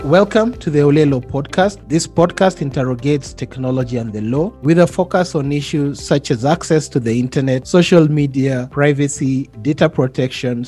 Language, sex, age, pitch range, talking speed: English, male, 30-49, 130-170 Hz, 155 wpm